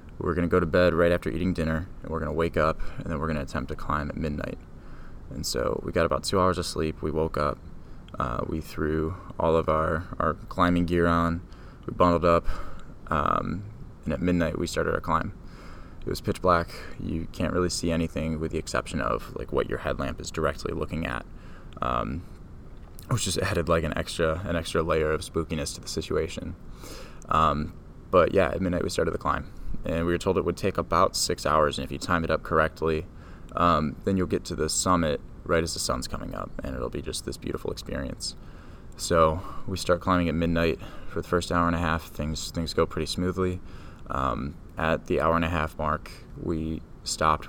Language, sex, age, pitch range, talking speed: English, male, 20-39, 80-90 Hz, 210 wpm